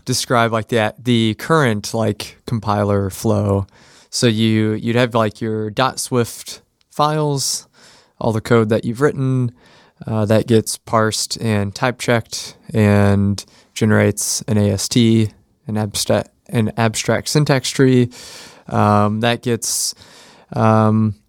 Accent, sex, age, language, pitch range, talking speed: American, male, 20-39, English, 105-120 Hz, 125 wpm